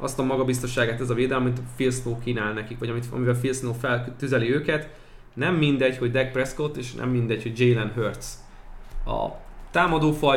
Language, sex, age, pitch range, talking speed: Hungarian, male, 20-39, 120-145 Hz, 185 wpm